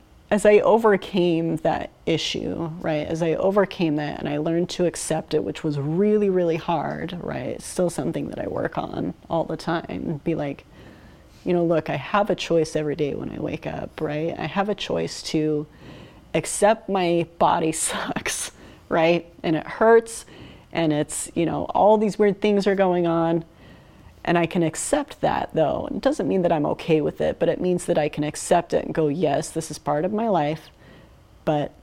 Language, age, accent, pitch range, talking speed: English, 30-49, American, 155-185 Hz, 195 wpm